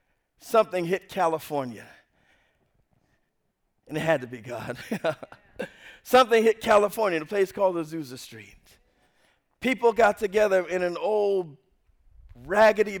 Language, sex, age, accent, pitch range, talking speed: English, male, 50-69, American, 185-240 Hz, 115 wpm